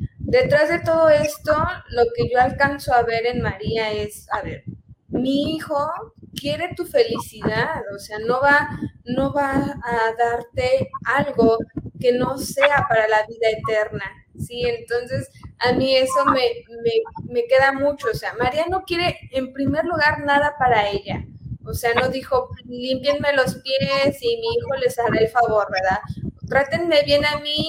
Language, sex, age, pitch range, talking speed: Spanish, female, 20-39, 235-300 Hz, 165 wpm